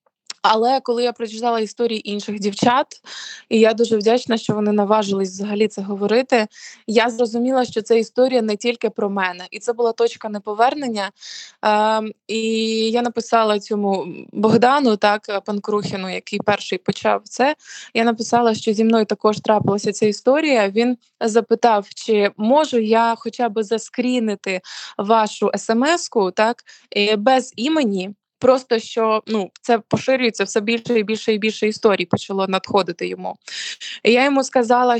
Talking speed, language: 145 wpm, Ukrainian